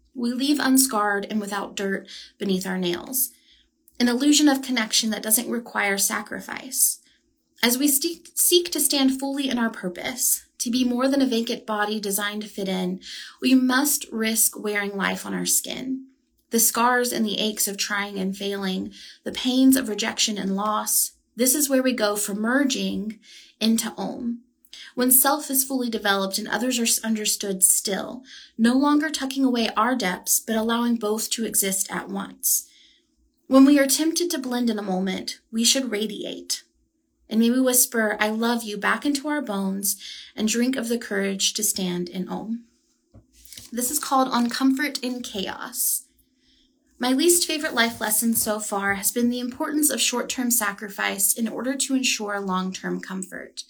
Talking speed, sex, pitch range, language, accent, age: 170 wpm, female, 205-270 Hz, English, American, 30-49